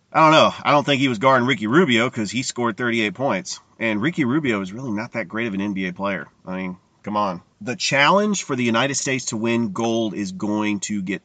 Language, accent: English, American